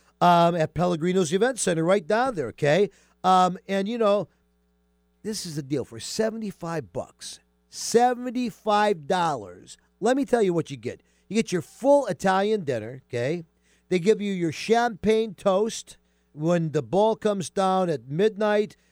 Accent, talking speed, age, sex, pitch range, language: American, 150 wpm, 50-69, male, 135-200 Hz, English